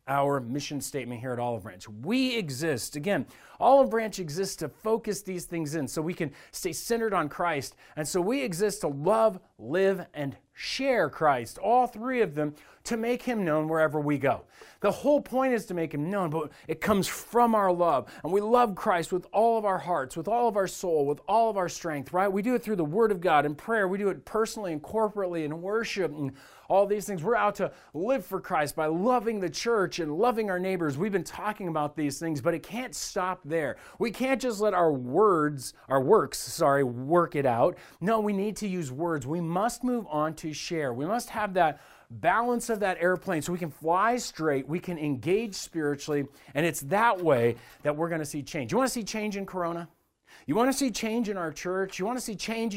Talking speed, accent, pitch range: 225 wpm, American, 155-220 Hz